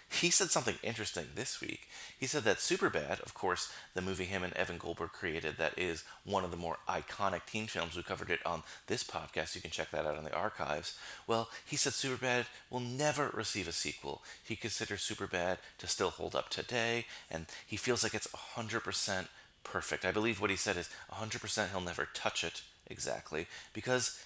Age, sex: 30-49, male